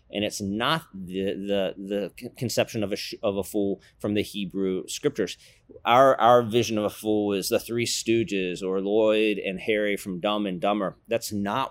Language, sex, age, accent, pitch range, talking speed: English, male, 30-49, American, 100-115 Hz, 190 wpm